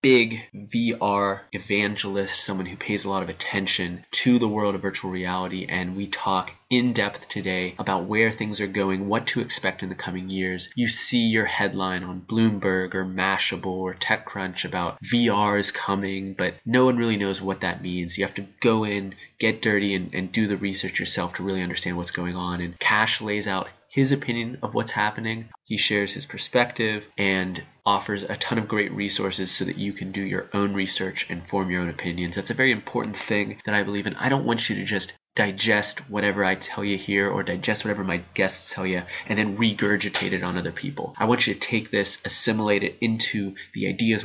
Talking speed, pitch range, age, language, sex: 210 wpm, 95-105 Hz, 20-39, English, male